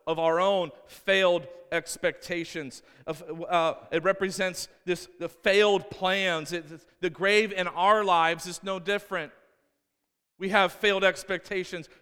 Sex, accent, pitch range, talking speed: male, American, 180-235 Hz, 115 wpm